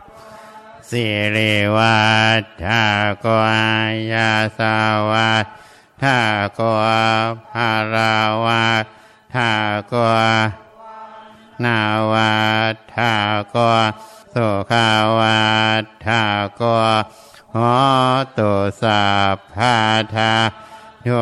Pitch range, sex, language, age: 110-115 Hz, male, Thai, 60-79